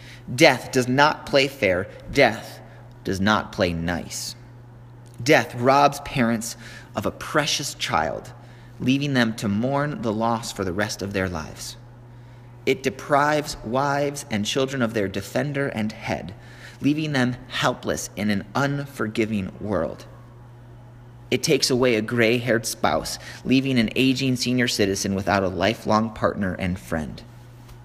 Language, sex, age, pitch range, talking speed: English, male, 30-49, 110-125 Hz, 135 wpm